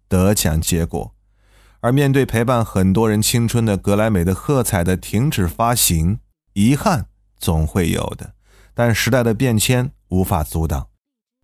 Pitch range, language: 90-120 Hz, Chinese